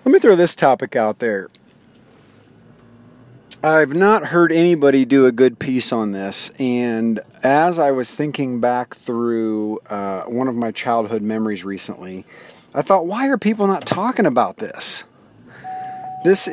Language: English